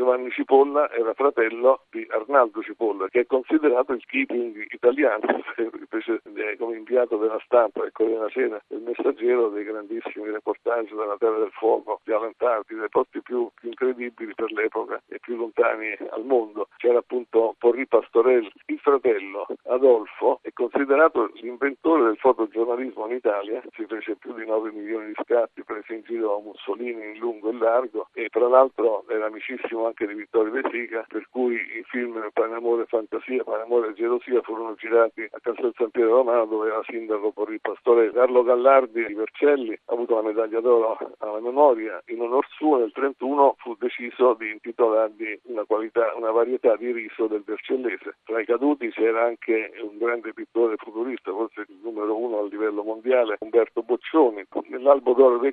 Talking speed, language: 170 wpm, Italian